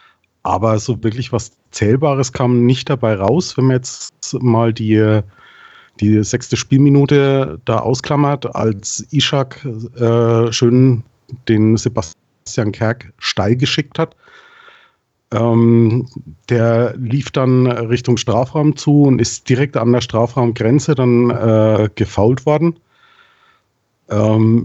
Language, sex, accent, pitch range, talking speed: German, male, German, 110-130 Hz, 115 wpm